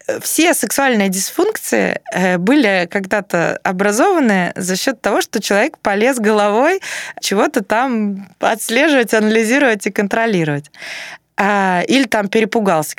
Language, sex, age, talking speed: Russian, female, 20-39, 100 wpm